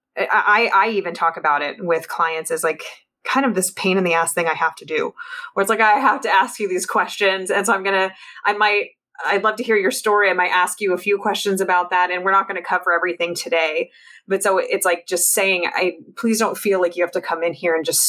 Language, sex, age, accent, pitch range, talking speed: English, female, 20-39, American, 165-200 Hz, 270 wpm